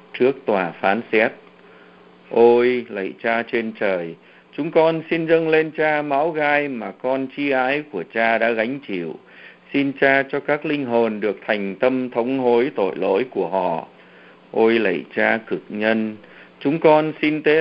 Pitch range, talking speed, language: 105-140 Hz, 170 wpm, Vietnamese